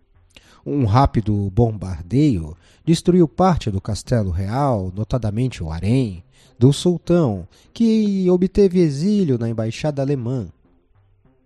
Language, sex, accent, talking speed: Portuguese, male, Brazilian, 100 wpm